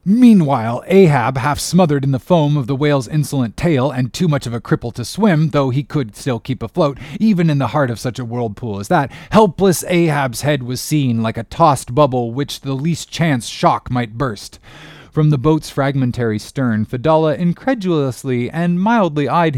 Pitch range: 125-165 Hz